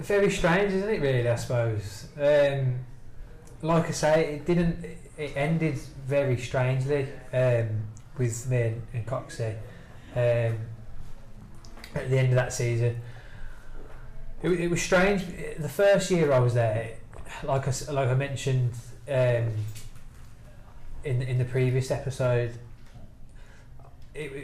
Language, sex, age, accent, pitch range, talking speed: English, male, 20-39, British, 115-140 Hz, 125 wpm